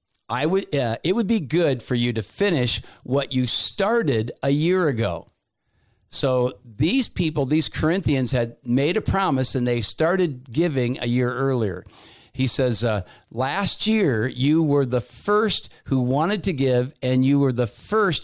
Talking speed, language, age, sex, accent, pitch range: 170 wpm, English, 50-69, male, American, 120-155 Hz